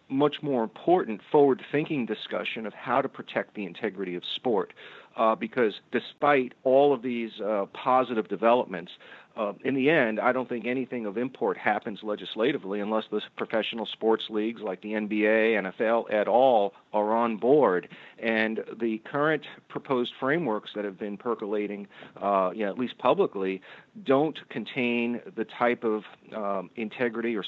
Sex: male